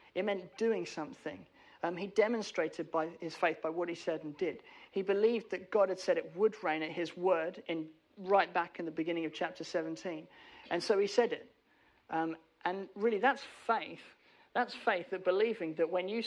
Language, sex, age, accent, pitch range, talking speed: English, male, 40-59, British, 165-215 Hz, 200 wpm